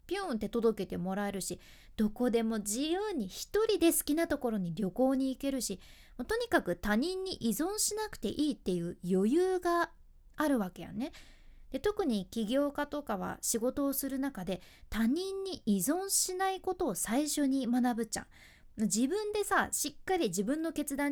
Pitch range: 205-340 Hz